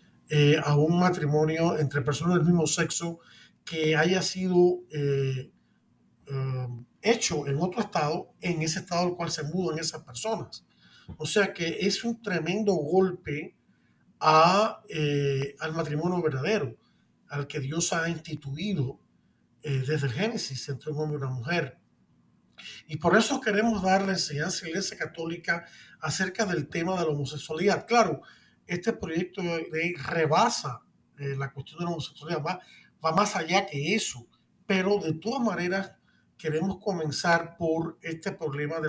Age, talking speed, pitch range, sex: 40-59, 150 wpm, 150-190 Hz, male